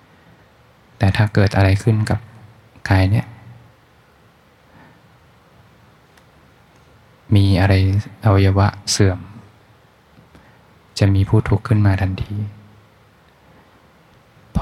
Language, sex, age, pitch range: Thai, male, 20-39, 95-110 Hz